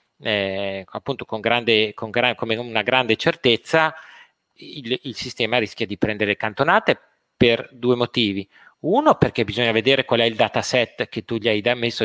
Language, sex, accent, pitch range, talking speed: Italian, male, native, 110-150 Hz, 170 wpm